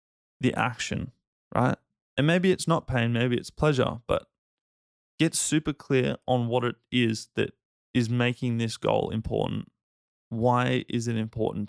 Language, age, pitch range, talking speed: English, 20-39, 115-135 Hz, 150 wpm